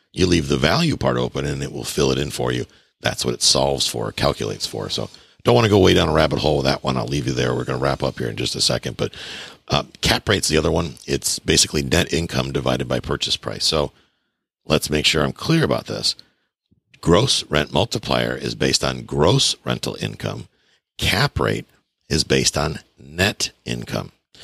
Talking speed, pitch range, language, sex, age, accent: 215 wpm, 65-85 Hz, English, male, 50-69, American